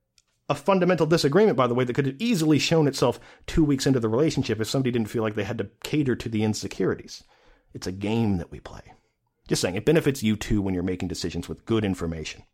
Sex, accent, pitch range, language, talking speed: male, American, 100-140 Hz, English, 230 wpm